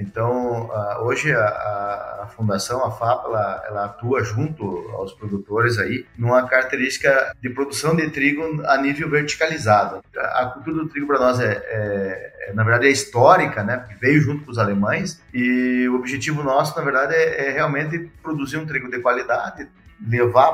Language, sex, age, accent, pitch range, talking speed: Portuguese, male, 30-49, Brazilian, 115-140 Hz, 175 wpm